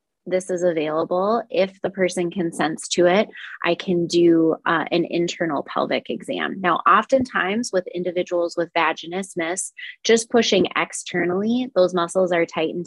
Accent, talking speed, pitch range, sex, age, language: American, 150 wpm, 170-190 Hz, female, 20-39, English